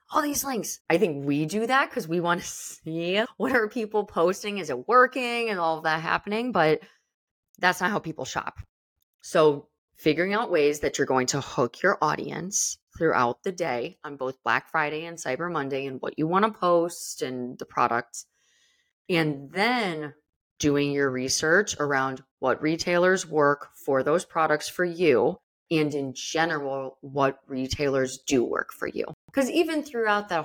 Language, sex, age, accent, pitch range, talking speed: English, female, 20-39, American, 135-180 Hz, 175 wpm